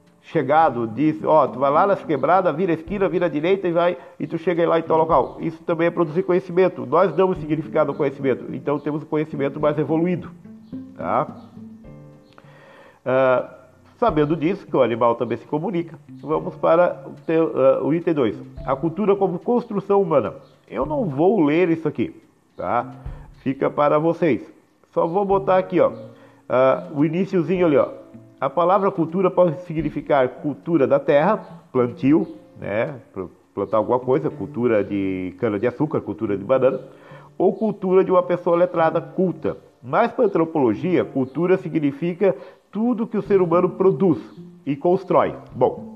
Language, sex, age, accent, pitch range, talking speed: Portuguese, male, 50-69, Brazilian, 140-185 Hz, 155 wpm